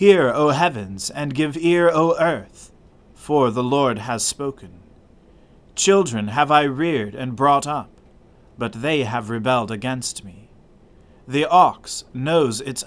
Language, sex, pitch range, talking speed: English, male, 105-155 Hz, 140 wpm